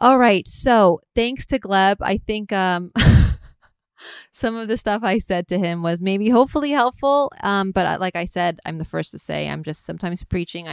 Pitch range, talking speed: 170-205 Hz, 195 wpm